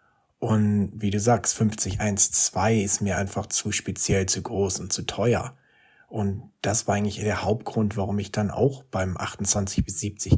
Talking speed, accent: 170 wpm, German